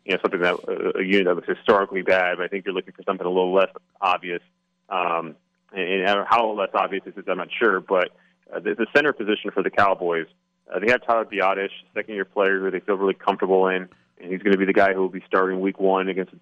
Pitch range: 90-100 Hz